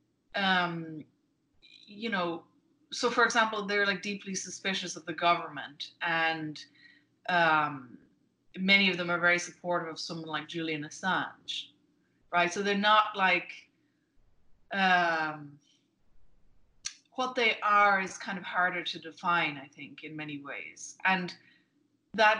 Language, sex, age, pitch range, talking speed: English, female, 30-49, 170-205 Hz, 130 wpm